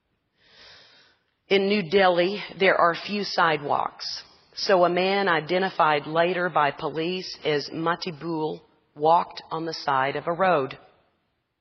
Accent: American